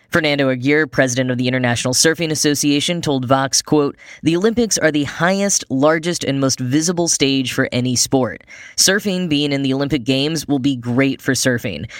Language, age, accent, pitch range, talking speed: English, 10-29, American, 130-160 Hz, 175 wpm